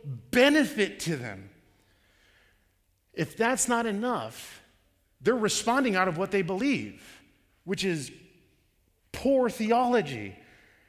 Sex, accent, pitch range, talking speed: male, American, 135-205 Hz, 100 wpm